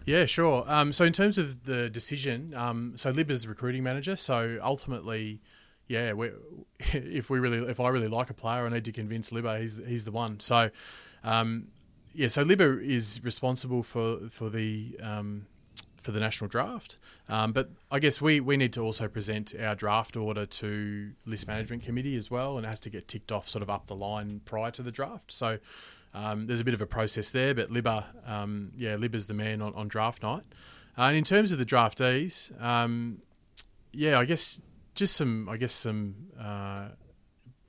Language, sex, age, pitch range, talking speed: English, male, 30-49, 110-125 Hz, 195 wpm